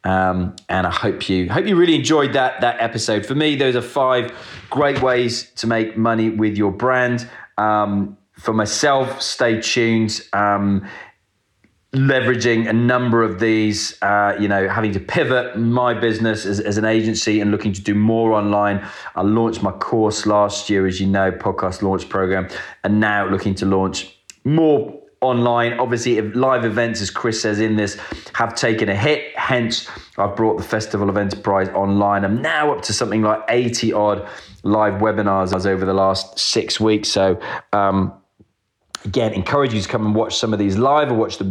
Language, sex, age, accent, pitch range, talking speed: English, male, 20-39, British, 100-115 Hz, 180 wpm